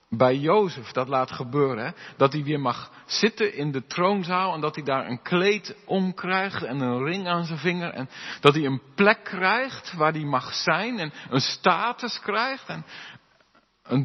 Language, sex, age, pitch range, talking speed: Dutch, male, 50-69, 135-195 Hz, 190 wpm